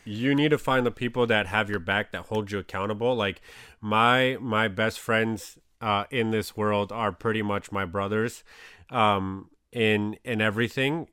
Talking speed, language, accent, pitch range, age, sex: 175 wpm, English, American, 110-140 Hz, 30-49, male